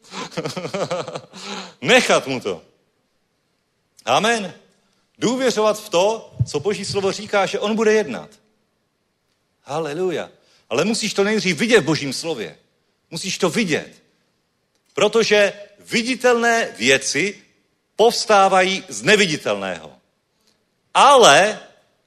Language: Czech